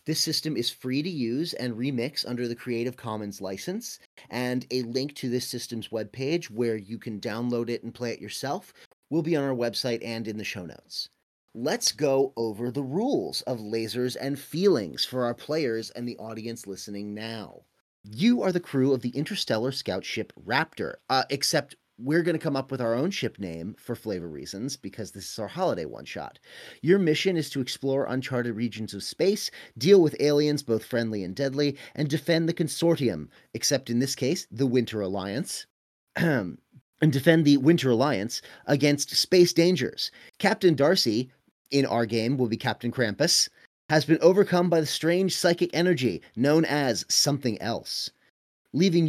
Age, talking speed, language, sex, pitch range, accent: 30-49, 175 wpm, English, male, 120-160 Hz, American